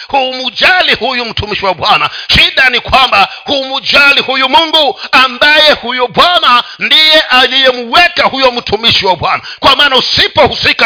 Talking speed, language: 145 wpm, Swahili